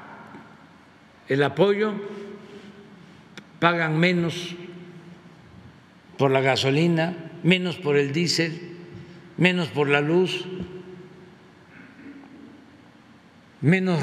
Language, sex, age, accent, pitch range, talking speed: Spanish, male, 60-79, Mexican, 150-185 Hz, 70 wpm